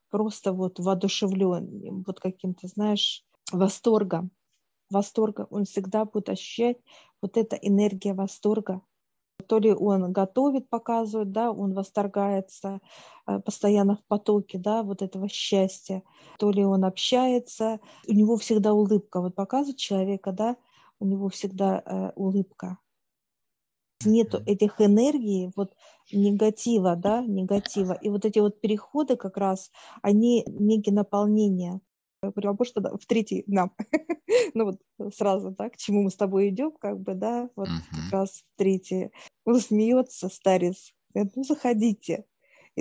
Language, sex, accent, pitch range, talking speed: Russian, female, native, 195-220 Hz, 130 wpm